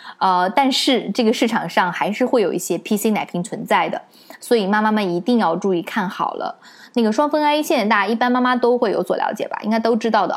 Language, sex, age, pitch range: Chinese, female, 20-39, 180-235 Hz